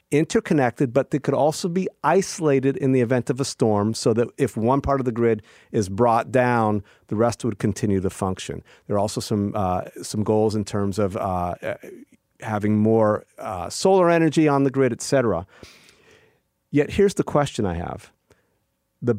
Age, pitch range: 40-59, 100-130 Hz